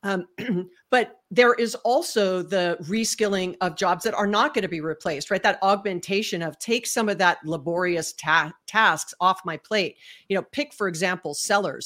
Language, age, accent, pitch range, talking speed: English, 40-59, American, 180-220 Hz, 175 wpm